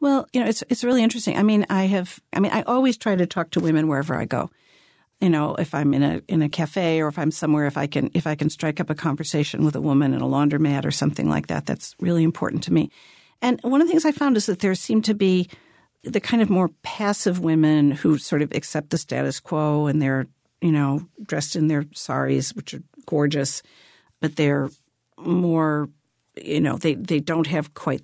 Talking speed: 230 wpm